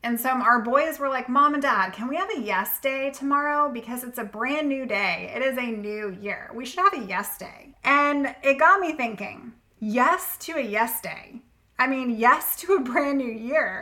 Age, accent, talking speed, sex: 20-39, American, 220 wpm, female